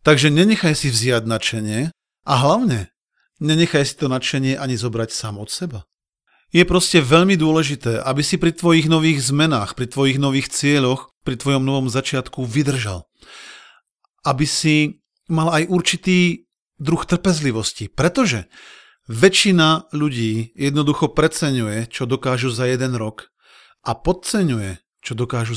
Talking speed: 130 wpm